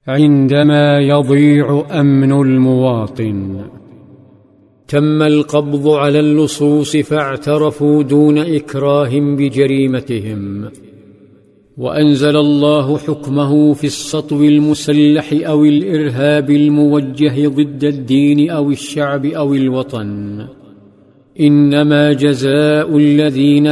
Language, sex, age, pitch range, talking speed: Arabic, male, 50-69, 140-150 Hz, 75 wpm